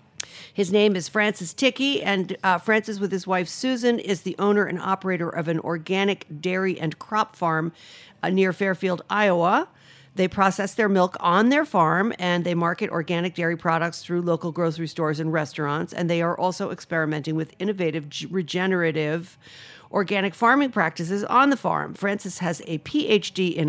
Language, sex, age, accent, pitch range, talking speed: English, female, 50-69, American, 165-200 Hz, 165 wpm